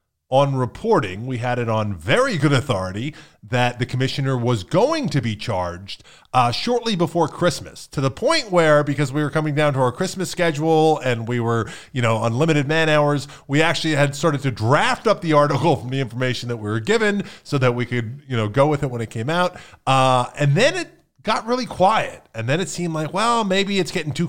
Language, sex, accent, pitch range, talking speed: English, male, American, 120-165 Hz, 215 wpm